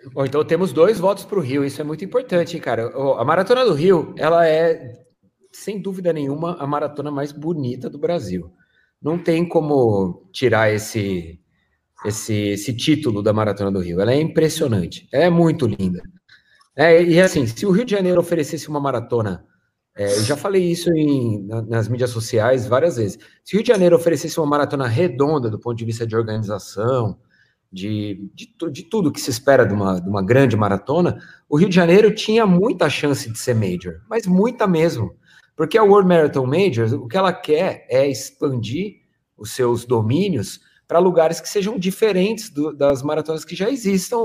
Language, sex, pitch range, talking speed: Portuguese, male, 120-180 Hz, 175 wpm